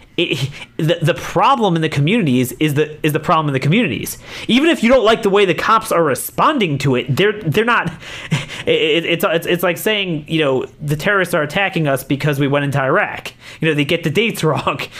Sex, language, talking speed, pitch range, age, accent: male, English, 225 wpm, 130-185 Hz, 30-49, American